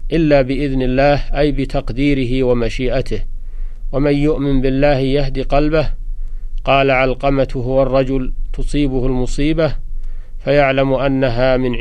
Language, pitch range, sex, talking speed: Arabic, 125-140 Hz, male, 95 wpm